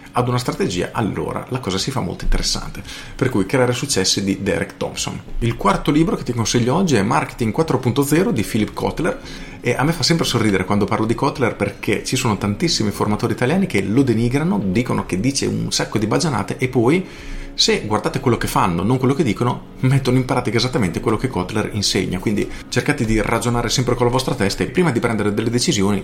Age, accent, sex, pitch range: 40-59, native, male, 105-130 Hz